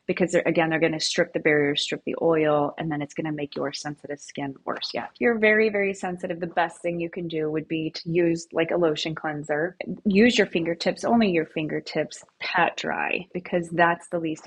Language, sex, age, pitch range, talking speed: English, female, 30-49, 155-180 Hz, 220 wpm